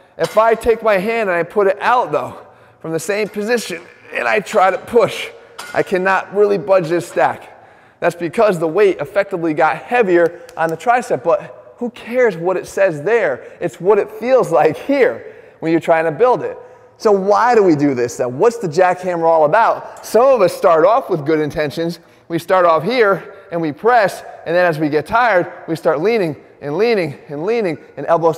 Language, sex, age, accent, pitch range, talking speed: English, male, 20-39, American, 165-225 Hz, 205 wpm